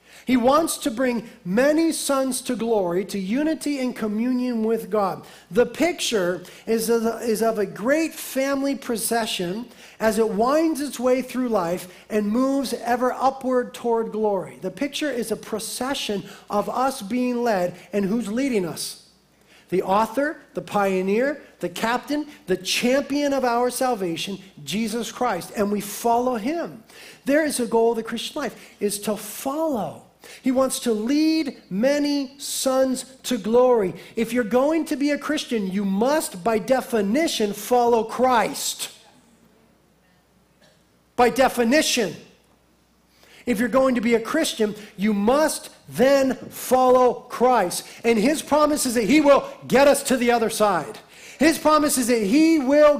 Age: 40-59